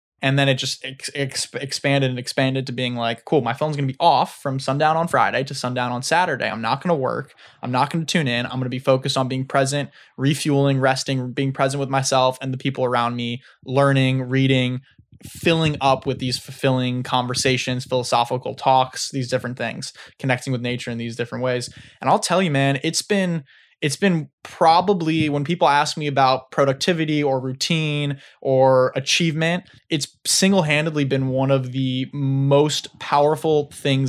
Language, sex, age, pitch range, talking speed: English, male, 20-39, 130-150 Hz, 185 wpm